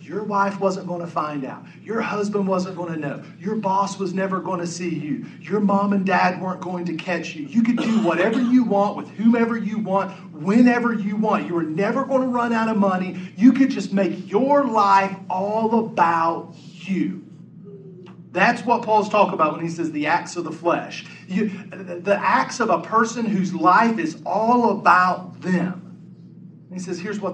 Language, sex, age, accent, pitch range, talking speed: English, male, 40-59, American, 165-205 Hz, 195 wpm